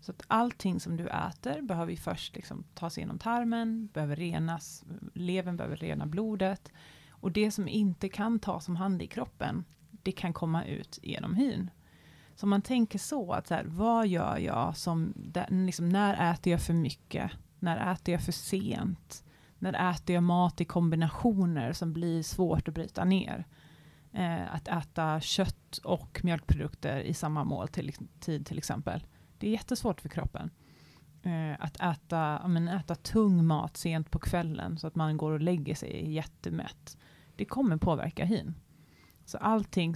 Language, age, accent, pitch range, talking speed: Swedish, 30-49, native, 155-185 Hz, 165 wpm